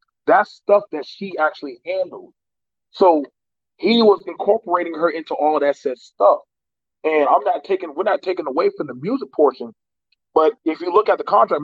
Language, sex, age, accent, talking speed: English, male, 30-49, American, 185 wpm